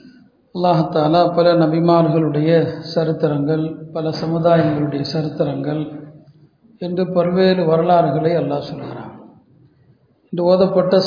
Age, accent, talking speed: 50-69, native, 75 wpm